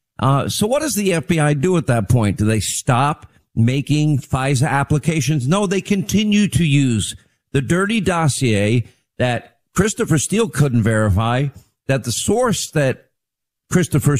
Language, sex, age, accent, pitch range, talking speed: English, male, 50-69, American, 110-150 Hz, 145 wpm